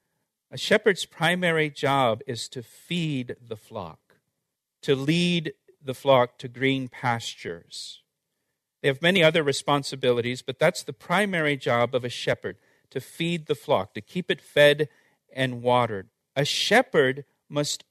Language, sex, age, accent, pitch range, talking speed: English, male, 50-69, American, 140-185 Hz, 140 wpm